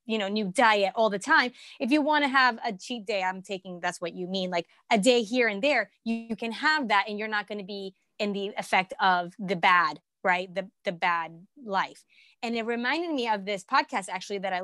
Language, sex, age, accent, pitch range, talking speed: English, female, 20-39, American, 200-265 Hz, 240 wpm